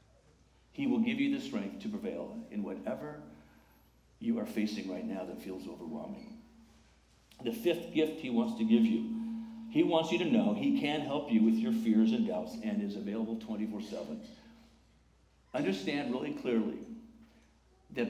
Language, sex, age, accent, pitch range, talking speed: English, male, 50-69, American, 155-230 Hz, 160 wpm